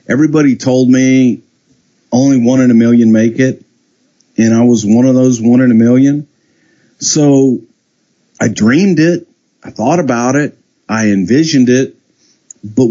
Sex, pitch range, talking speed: male, 110-160 Hz, 150 wpm